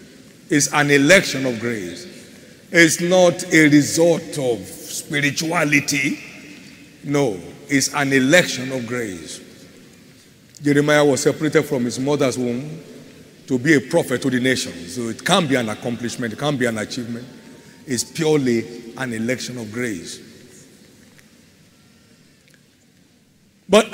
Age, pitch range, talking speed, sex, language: 50-69, 130-180 Hz, 125 wpm, male, English